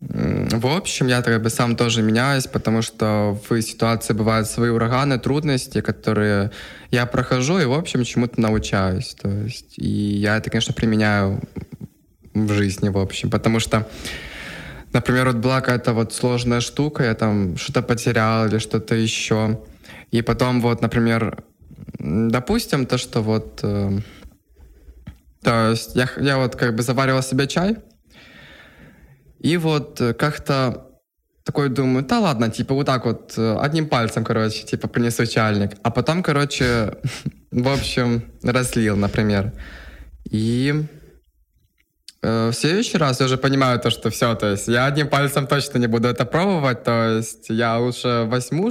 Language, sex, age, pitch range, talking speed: Ukrainian, male, 20-39, 110-130 Hz, 145 wpm